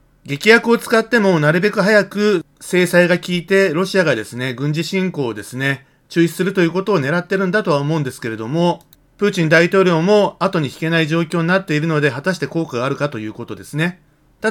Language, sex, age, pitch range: Japanese, male, 40-59, 140-190 Hz